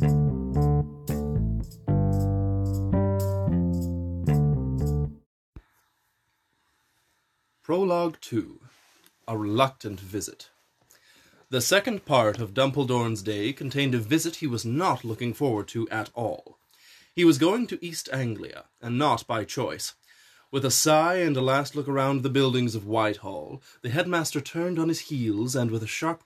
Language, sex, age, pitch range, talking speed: English, male, 30-49, 110-155 Hz, 125 wpm